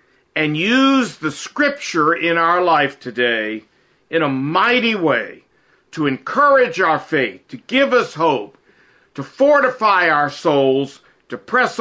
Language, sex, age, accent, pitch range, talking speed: English, male, 50-69, American, 155-250 Hz, 130 wpm